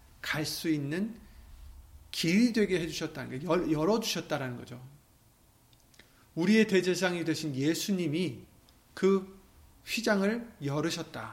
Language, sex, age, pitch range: Korean, male, 30-49, 130-195 Hz